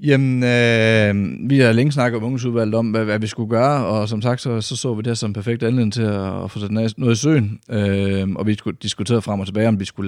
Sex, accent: male, native